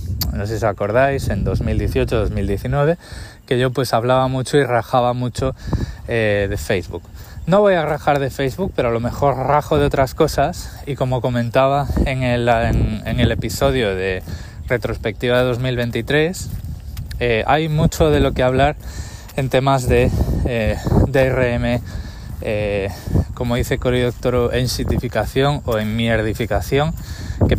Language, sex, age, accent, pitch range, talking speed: Spanish, male, 20-39, Spanish, 105-130 Hz, 150 wpm